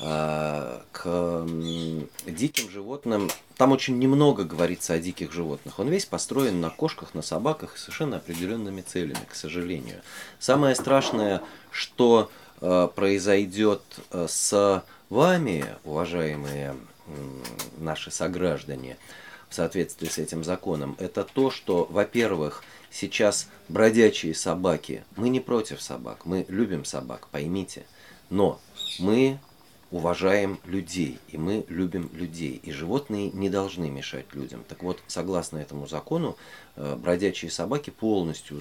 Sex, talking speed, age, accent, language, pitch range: male, 115 wpm, 30-49, native, Russian, 80-110 Hz